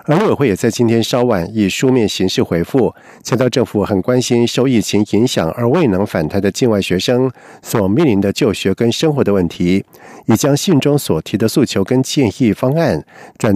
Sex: male